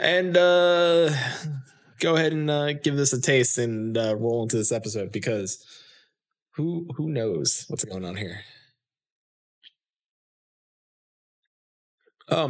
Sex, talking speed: male, 120 wpm